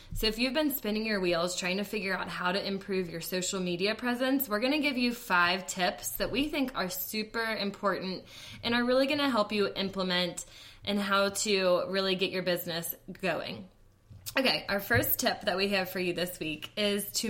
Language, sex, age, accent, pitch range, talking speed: English, female, 20-39, American, 180-215 Hz, 210 wpm